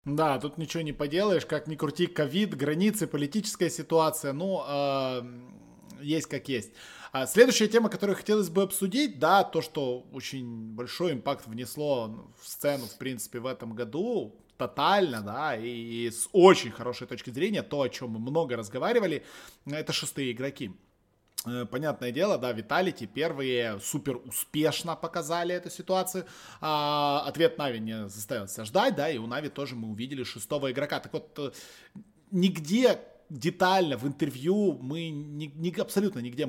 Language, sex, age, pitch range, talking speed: Russian, male, 20-39, 130-180 Hz, 145 wpm